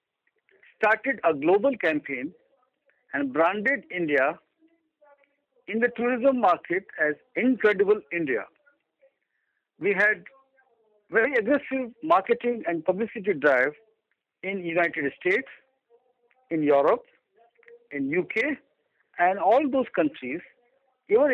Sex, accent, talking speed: male, Indian, 95 wpm